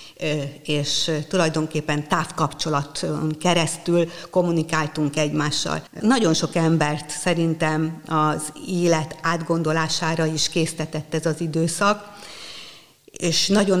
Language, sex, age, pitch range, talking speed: Hungarian, female, 50-69, 155-180 Hz, 85 wpm